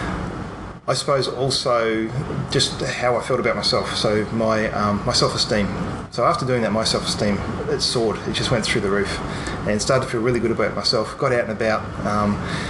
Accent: Australian